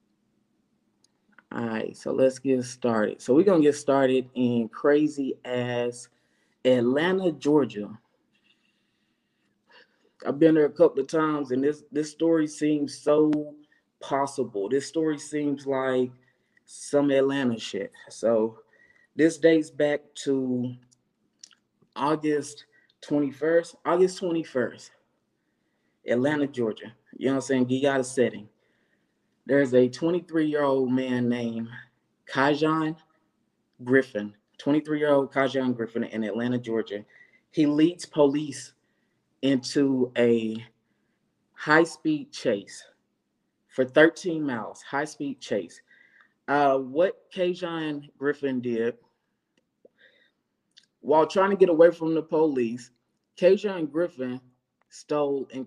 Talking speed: 105 wpm